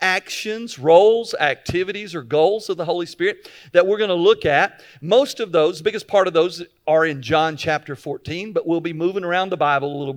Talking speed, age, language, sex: 220 wpm, 50-69, English, male